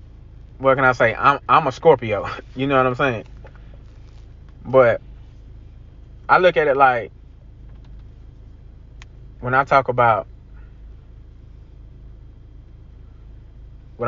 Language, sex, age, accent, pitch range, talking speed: English, male, 20-39, American, 105-120 Hz, 100 wpm